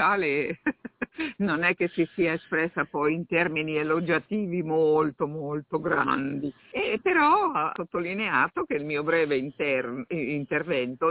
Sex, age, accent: female, 50-69, native